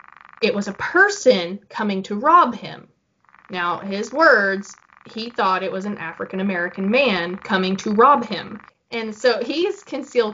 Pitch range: 190-240 Hz